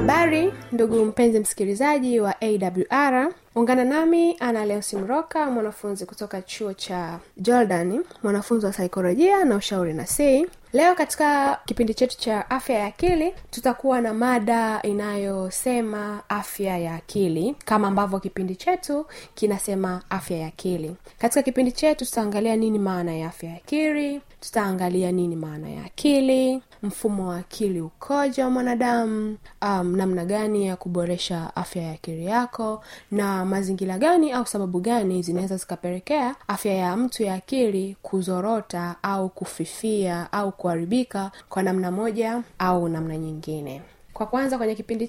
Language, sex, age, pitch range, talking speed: Swahili, female, 20-39, 185-250 Hz, 135 wpm